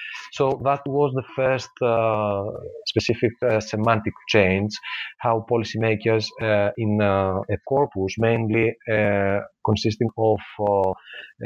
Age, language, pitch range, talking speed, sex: 30-49, English, 105-120 Hz, 115 wpm, male